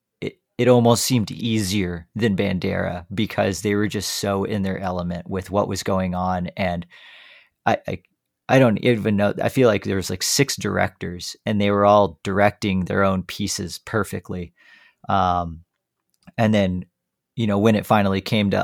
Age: 40-59